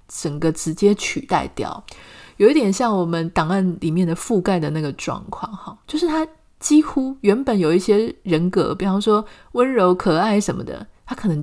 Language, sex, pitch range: Chinese, female, 170-225 Hz